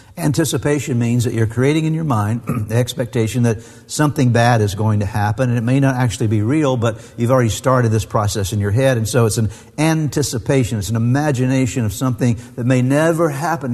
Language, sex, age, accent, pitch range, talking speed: English, male, 50-69, American, 110-130 Hz, 205 wpm